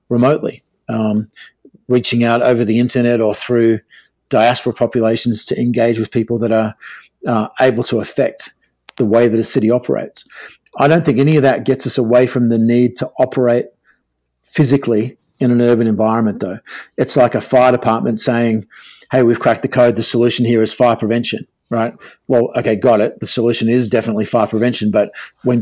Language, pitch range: English, 110-125 Hz